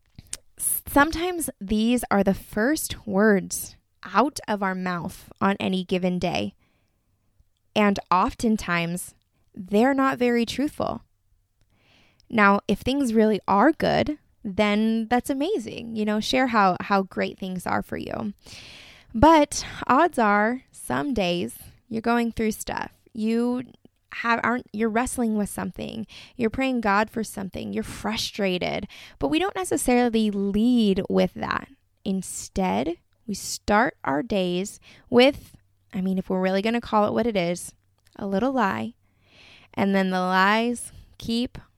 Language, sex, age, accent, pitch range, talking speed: English, female, 20-39, American, 180-235 Hz, 135 wpm